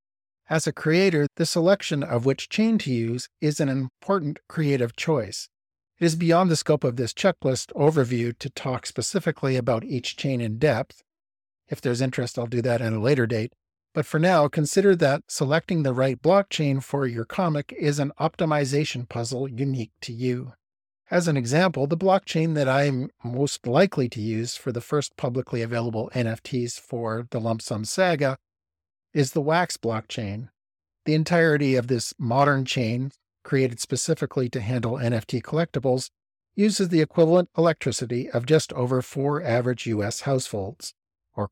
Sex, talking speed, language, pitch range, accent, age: male, 160 wpm, English, 120-155 Hz, American, 50-69